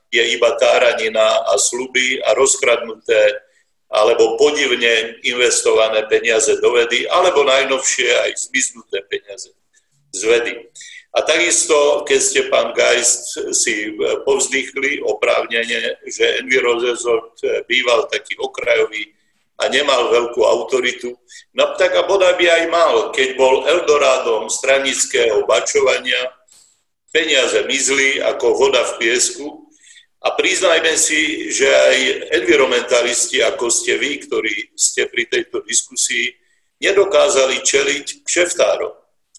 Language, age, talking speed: Slovak, 50-69, 115 wpm